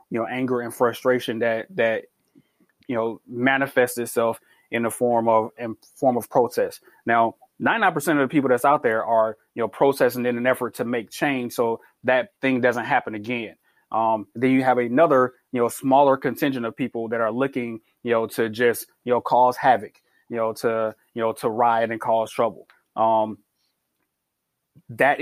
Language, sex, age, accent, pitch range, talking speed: English, male, 20-39, American, 115-140 Hz, 185 wpm